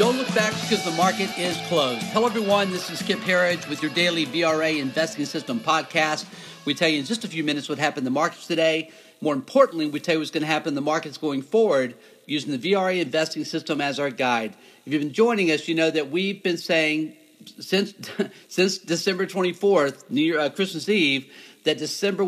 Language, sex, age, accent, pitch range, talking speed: English, male, 50-69, American, 145-180 Hz, 215 wpm